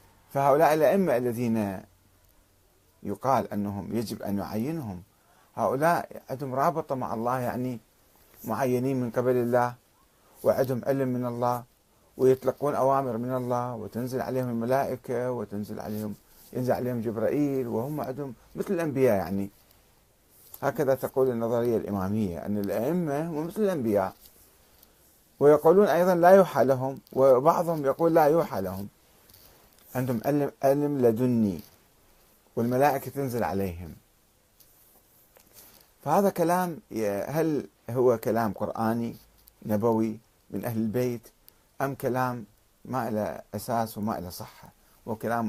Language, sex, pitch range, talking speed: Arabic, male, 105-135 Hz, 110 wpm